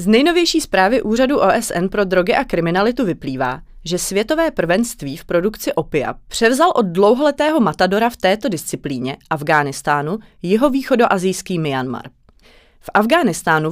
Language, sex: Czech, female